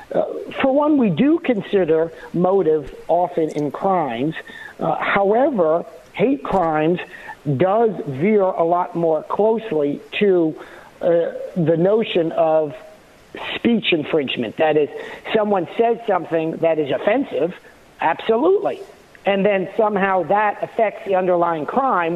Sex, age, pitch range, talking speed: male, 50-69, 165-215 Hz, 120 wpm